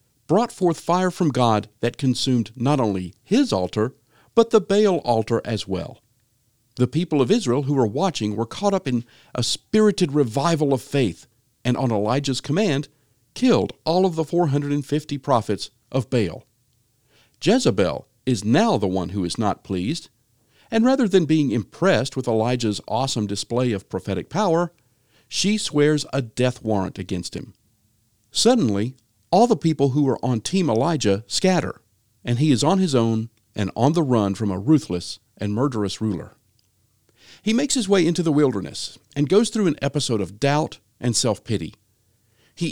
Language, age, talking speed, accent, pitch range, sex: English, 50-69, 165 wpm, American, 110-150 Hz, male